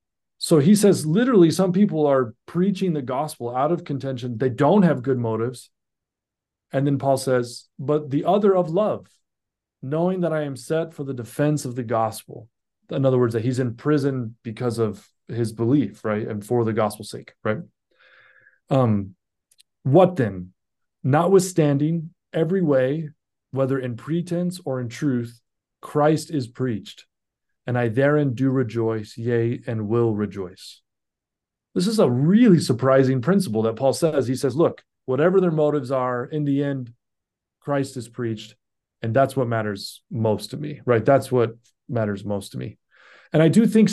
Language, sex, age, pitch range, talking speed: English, male, 30-49, 120-160 Hz, 165 wpm